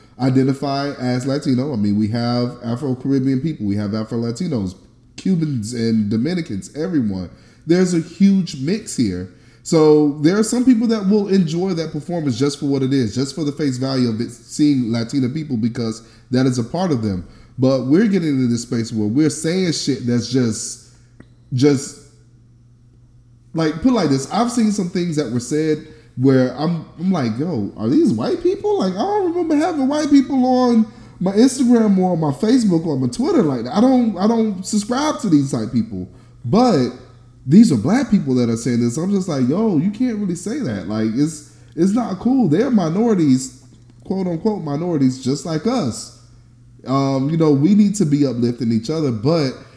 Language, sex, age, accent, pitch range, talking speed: English, male, 20-39, American, 120-185 Hz, 195 wpm